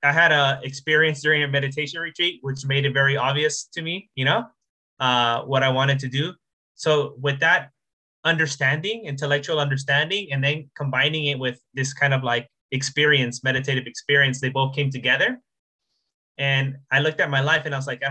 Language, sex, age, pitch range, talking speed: English, male, 20-39, 130-155 Hz, 185 wpm